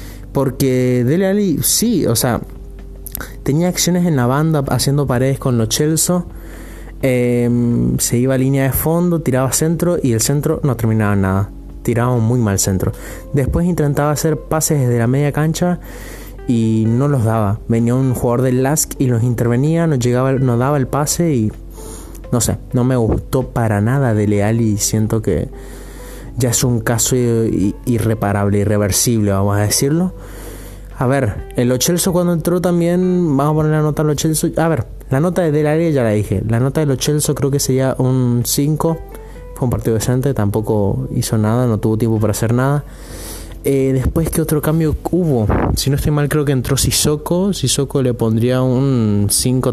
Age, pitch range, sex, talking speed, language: 20-39, 110-150 Hz, male, 175 wpm, Spanish